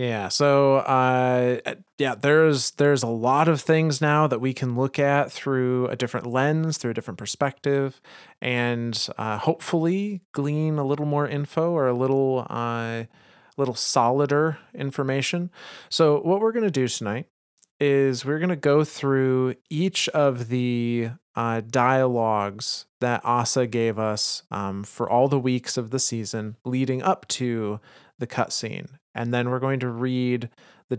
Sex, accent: male, American